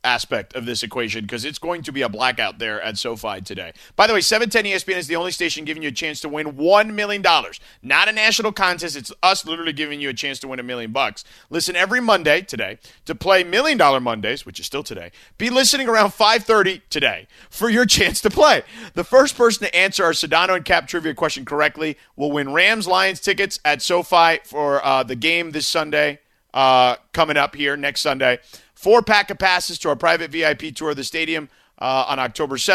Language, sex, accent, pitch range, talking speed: English, male, American, 145-190 Hz, 215 wpm